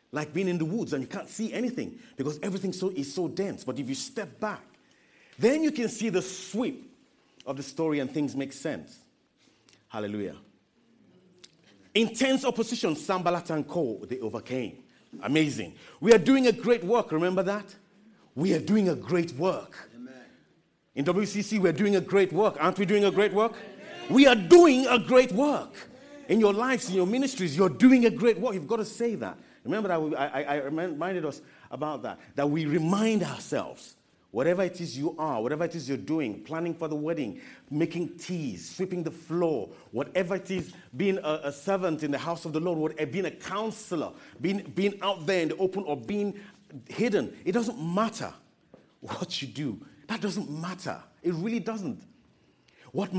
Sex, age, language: male, 40-59, English